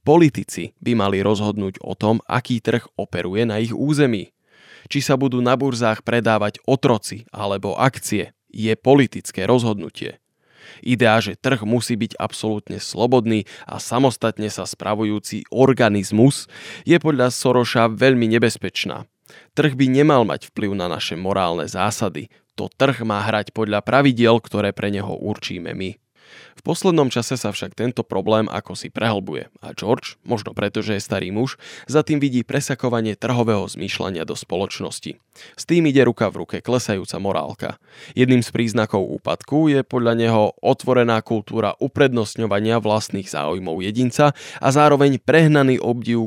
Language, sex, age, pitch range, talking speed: Slovak, male, 20-39, 105-130 Hz, 145 wpm